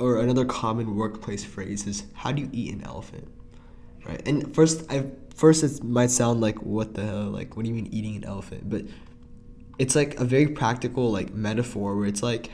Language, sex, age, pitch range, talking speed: English, male, 10-29, 105-125 Hz, 205 wpm